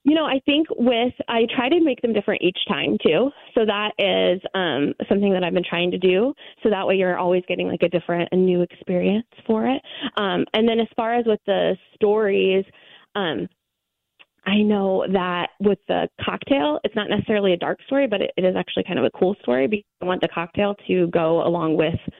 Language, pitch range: English, 175-210 Hz